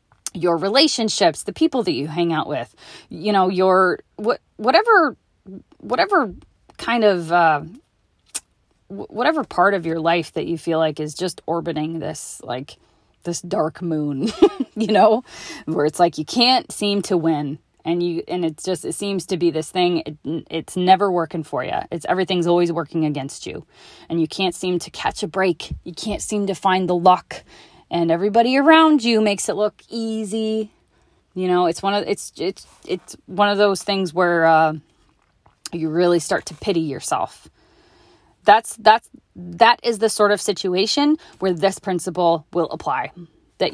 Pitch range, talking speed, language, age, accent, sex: 165-210 Hz, 175 wpm, English, 20-39, American, female